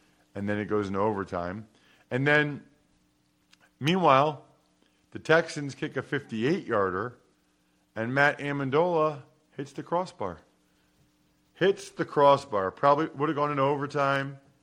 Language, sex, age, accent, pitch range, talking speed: English, male, 40-59, American, 95-145 Hz, 120 wpm